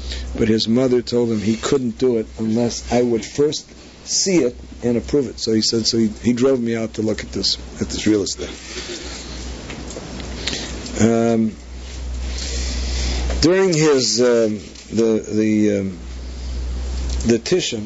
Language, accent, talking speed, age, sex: English, American, 150 wpm, 50-69, male